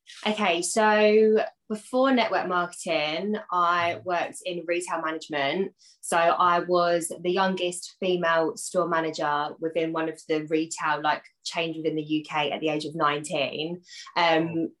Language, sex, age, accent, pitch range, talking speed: English, female, 20-39, British, 160-195 Hz, 140 wpm